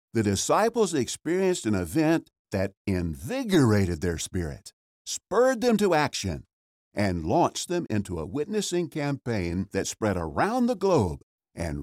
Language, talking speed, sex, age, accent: English, 130 wpm, male, 60-79, American